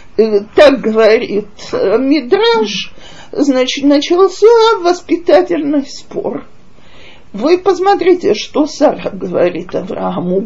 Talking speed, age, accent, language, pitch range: 75 wpm, 50-69, native, Russian, 245-370 Hz